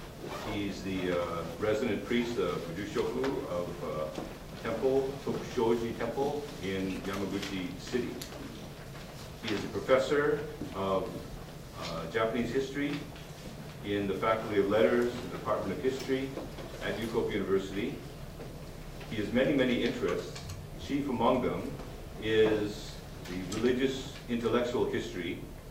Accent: American